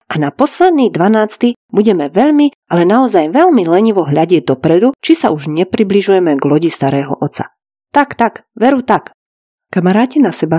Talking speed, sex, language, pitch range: 155 wpm, female, Slovak, 160-220 Hz